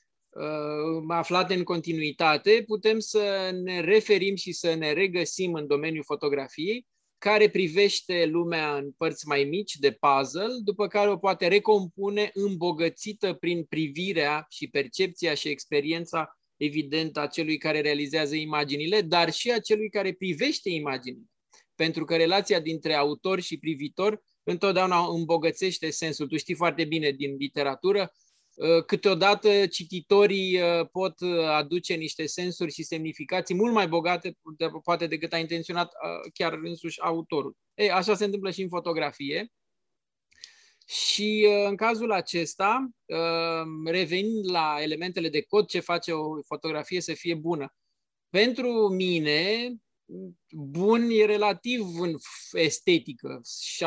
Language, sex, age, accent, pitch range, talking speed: Romanian, male, 20-39, native, 160-200 Hz, 125 wpm